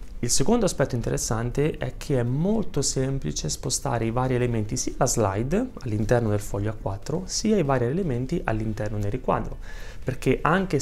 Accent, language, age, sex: native, Italian, 30-49, male